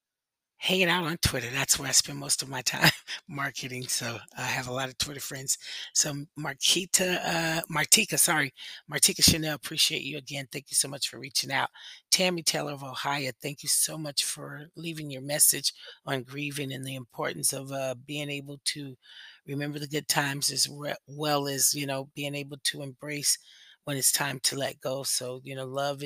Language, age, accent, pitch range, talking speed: English, 30-49, American, 135-150 Hz, 190 wpm